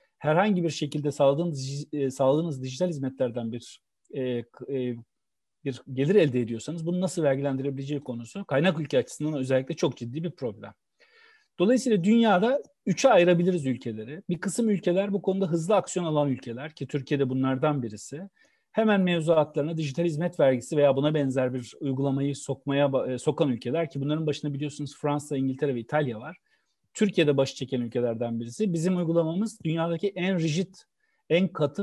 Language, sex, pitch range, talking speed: Turkish, male, 135-175 Hz, 145 wpm